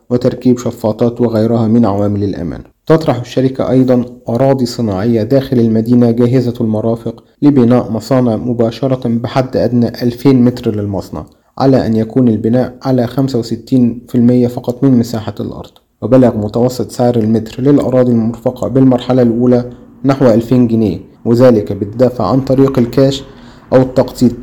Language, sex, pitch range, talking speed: Arabic, male, 115-130 Hz, 125 wpm